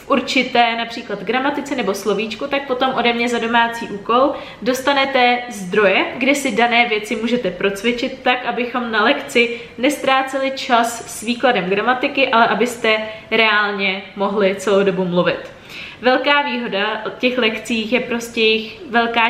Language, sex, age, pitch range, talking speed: Czech, female, 20-39, 210-245 Hz, 140 wpm